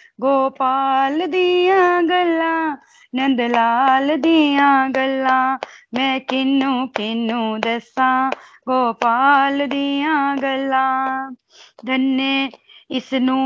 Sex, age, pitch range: female, 30-49, 260-285 Hz